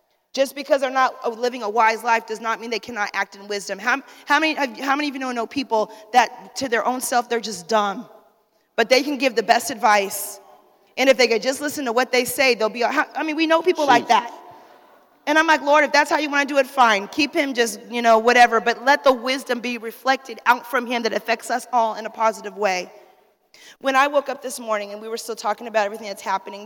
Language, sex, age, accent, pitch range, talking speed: English, female, 30-49, American, 220-265 Hz, 245 wpm